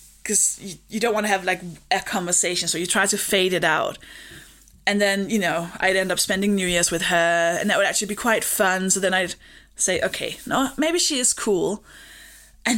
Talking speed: 220 wpm